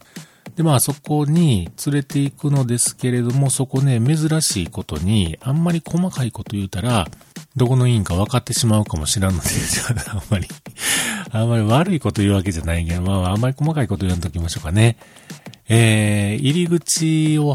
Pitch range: 95-145 Hz